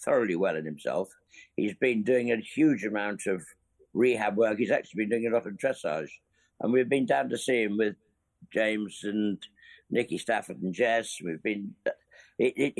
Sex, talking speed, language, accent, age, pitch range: male, 175 wpm, English, British, 60-79, 100-130 Hz